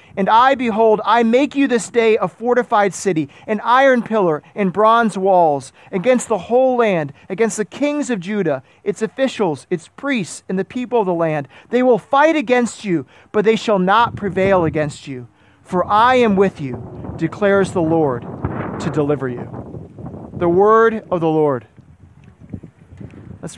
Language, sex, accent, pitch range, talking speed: English, male, American, 160-225 Hz, 165 wpm